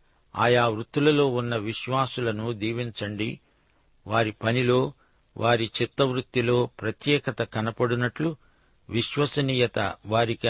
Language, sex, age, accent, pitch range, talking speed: Telugu, male, 50-69, native, 110-130 Hz, 80 wpm